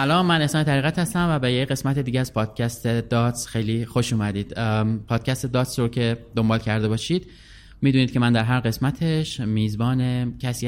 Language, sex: Persian, male